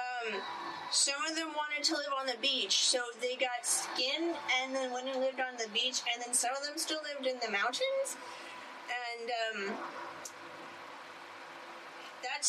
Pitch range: 245-320 Hz